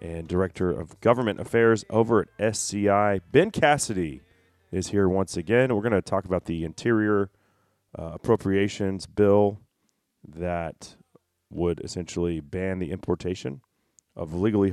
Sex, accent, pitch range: male, American, 90-115 Hz